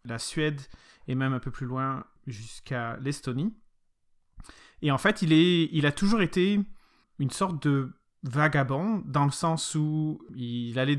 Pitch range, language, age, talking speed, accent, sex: 130-165 Hz, French, 30-49, 160 wpm, French, male